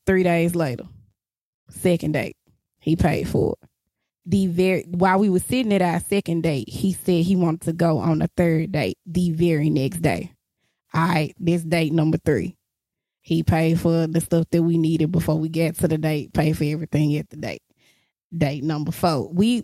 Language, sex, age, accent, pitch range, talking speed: English, female, 20-39, American, 160-180 Hz, 195 wpm